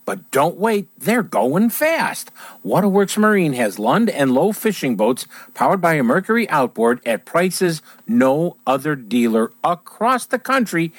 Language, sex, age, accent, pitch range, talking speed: English, male, 50-69, American, 160-230 Hz, 145 wpm